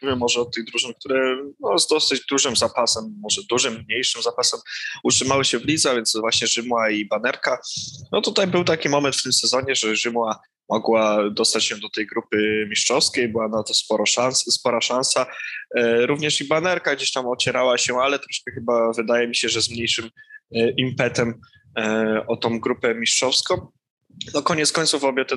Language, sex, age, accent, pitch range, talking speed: Polish, male, 20-39, native, 115-135 Hz, 175 wpm